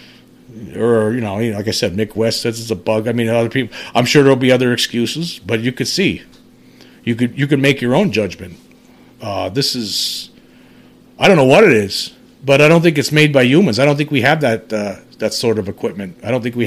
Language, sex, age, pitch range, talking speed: English, male, 40-59, 105-130 Hz, 245 wpm